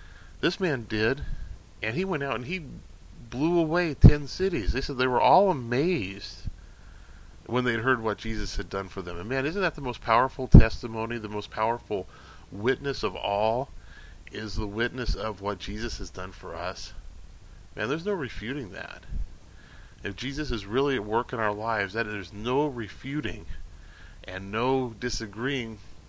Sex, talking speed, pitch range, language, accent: male, 165 wpm, 95-130 Hz, English, American